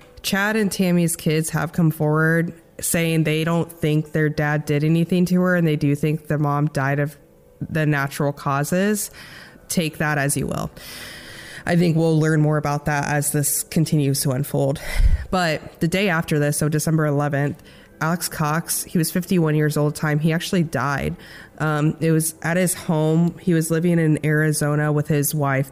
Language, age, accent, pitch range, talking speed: English, 20-39, American, 150-170 Hz, 185 wpm